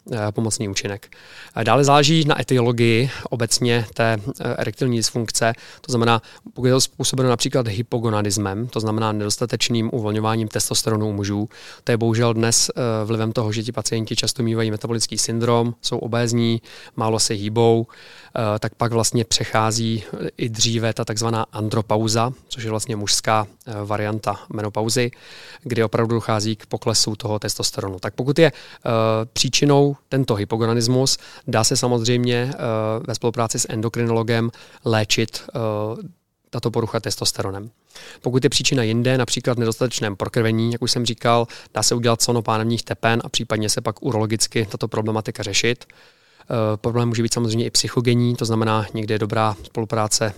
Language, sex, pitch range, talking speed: Czech, male, 110-120 Hz, 145 wpm